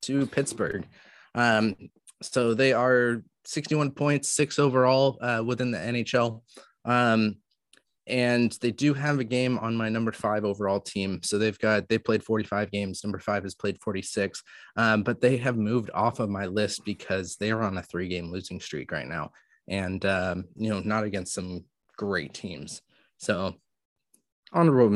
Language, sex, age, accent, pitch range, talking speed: English, male, 20-39, American, 100-120 Hz, 165 wpm